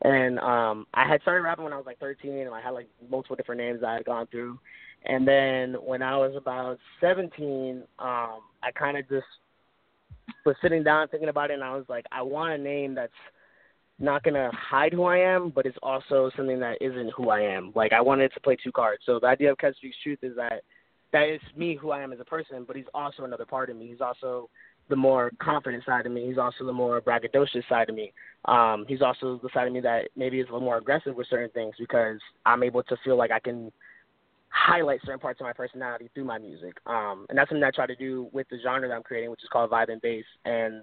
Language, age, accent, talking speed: English, 20-39, American, 245 wpm